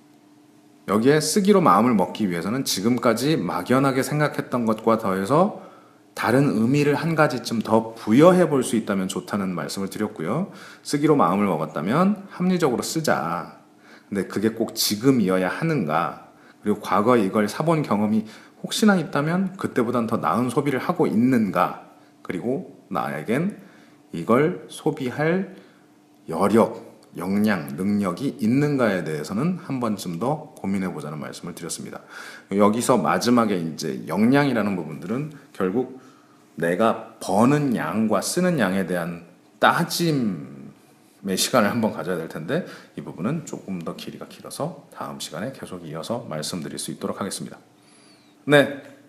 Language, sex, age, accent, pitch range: Korean, male, 30-49, native, 105-155 Hz